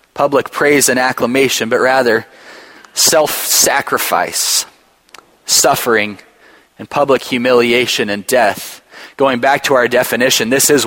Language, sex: English, male